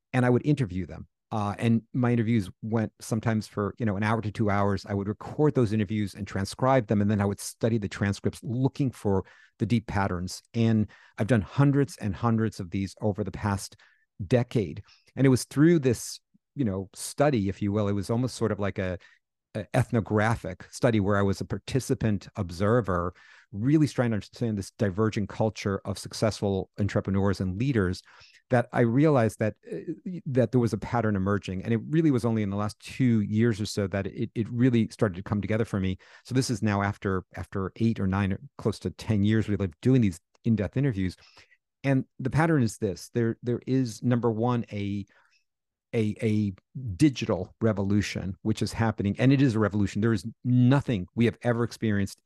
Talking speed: 200 wpm